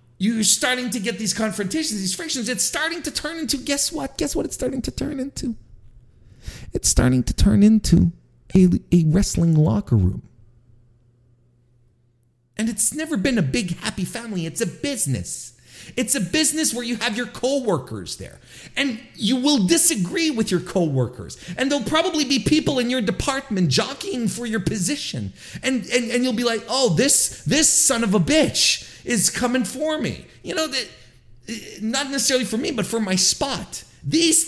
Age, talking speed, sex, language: 40-59, 175 wpm, male, English